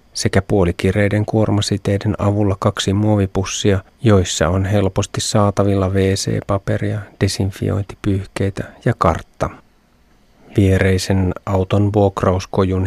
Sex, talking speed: male, 80 wpm